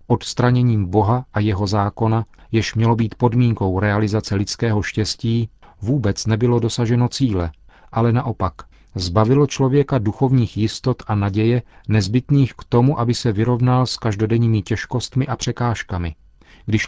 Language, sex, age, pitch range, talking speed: Czech, male, 40-59, 105-120 Hz, 130 wpm